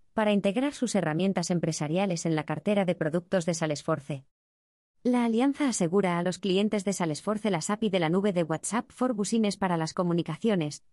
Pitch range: 165-210 Hz